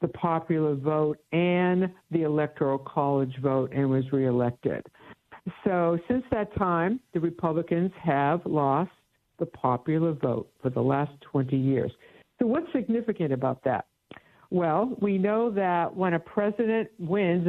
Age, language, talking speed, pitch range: 60-79, English, 135 wpm, 150-195 Hz